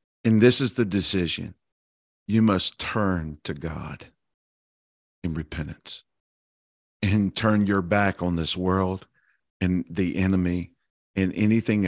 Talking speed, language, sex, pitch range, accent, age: 120 wpm, English, male, 85-105 Hz, American, 50-69